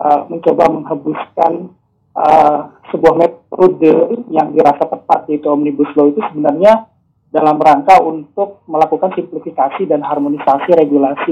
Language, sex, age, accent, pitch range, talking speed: Indonesian, male, 40-59, native, 150-185 Hz, 110 wpm